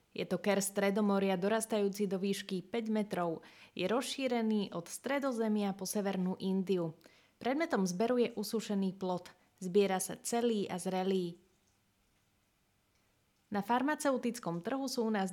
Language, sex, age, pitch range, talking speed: Slovak, female, 20-39, 180-225 Hz, 125 wpm